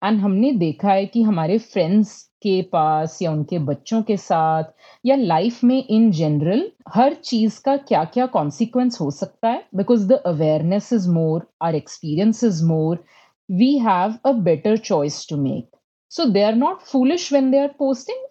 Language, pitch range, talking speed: English, 185-270 Hz, 155 wpm